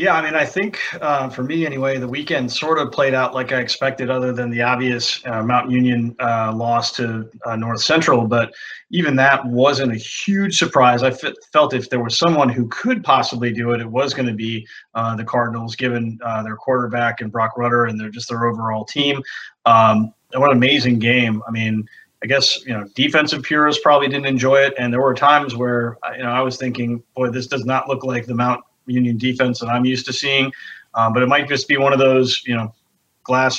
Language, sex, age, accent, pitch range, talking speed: English, male, 30-49, American, 120-135 Hz, 225 wpm